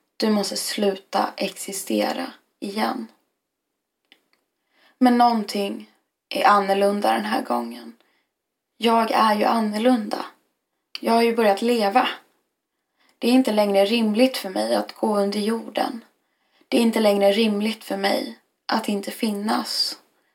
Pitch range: 195-230 Hz